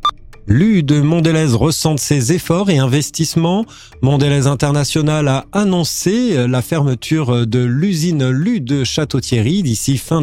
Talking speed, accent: 125 wpm, French